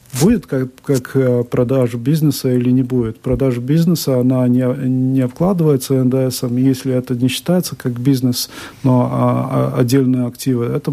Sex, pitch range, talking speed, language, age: male, 120-135 Hz, 145 wpm, Russian, 50-69